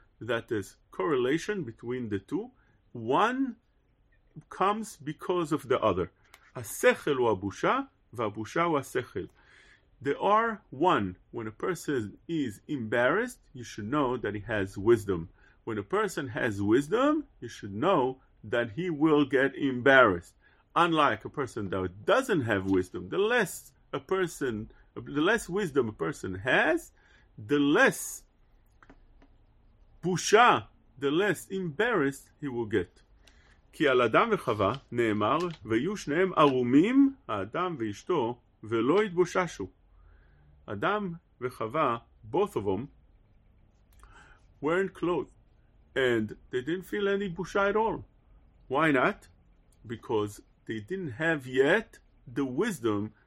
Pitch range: 105-175 Hz